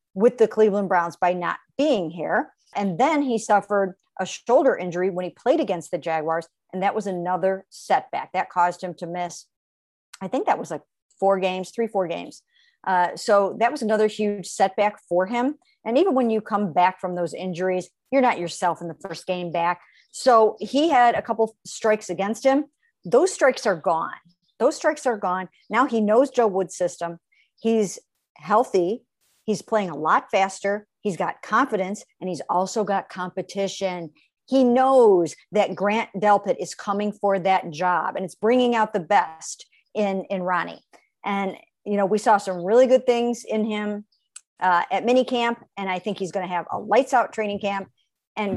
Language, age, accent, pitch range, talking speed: English, 50-69, American, 180-220 Hz, 185 wpm